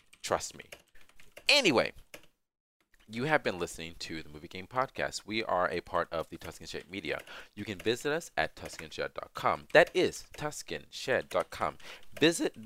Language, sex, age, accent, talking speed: English, male, 30-49, American, 145 wpm